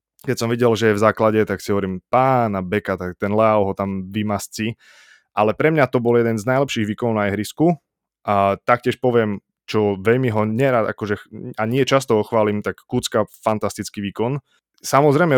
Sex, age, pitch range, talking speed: male, 20-39, 105-125 Hz, 180 wpm